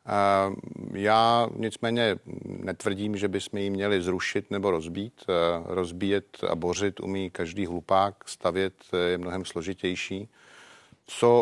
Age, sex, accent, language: 50-69, male, native, Czech